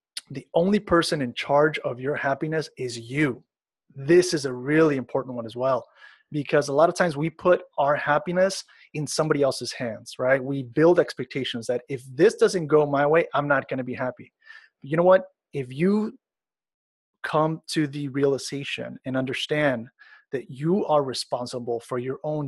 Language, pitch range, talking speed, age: English, 130-155 Hz, 175 wpm, 30-49